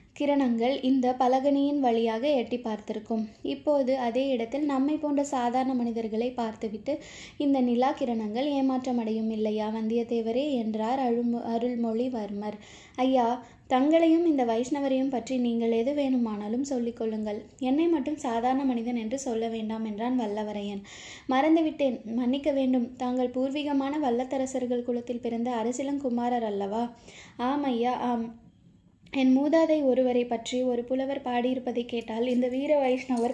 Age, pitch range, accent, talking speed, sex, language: 20-39, 235-270 Hz, native, 115 wpm, female, Tamil